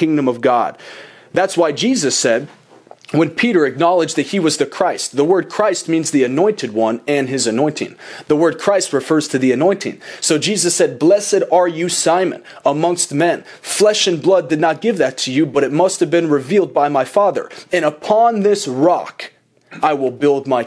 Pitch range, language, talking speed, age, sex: 140-180 Hz, English, 195 wpm, 30-49, male